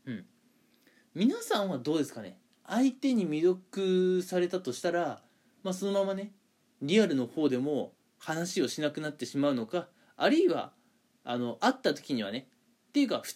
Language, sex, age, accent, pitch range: Japanese, male, 20-39, native, 155-235 Hz